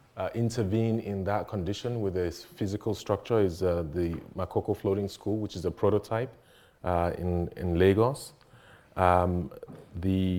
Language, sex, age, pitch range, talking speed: English, male, 30-49, 90-105 Hz, 145 wpm